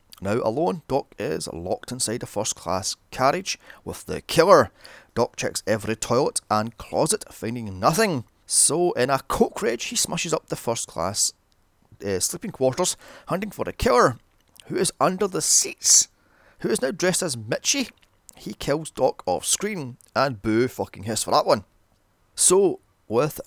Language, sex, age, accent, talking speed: English, male, 30-49, British, 155 wpm